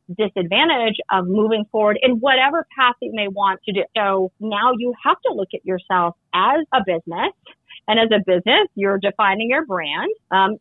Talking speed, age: 180 wpm, 30-49